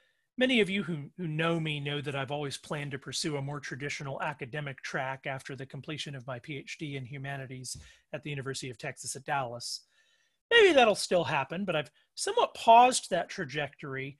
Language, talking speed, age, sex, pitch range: English, 185 wpm, 40-59, male, 145-200 Hz